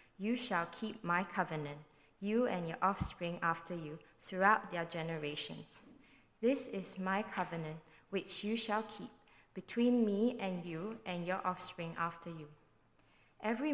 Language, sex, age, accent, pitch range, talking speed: English, female, 20-39, Malaysian, 160-195 Hz, 140 wpm